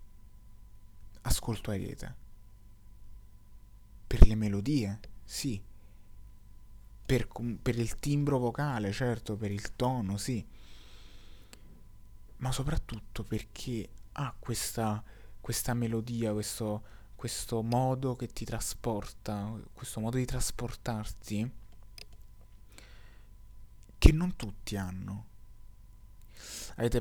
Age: 20-39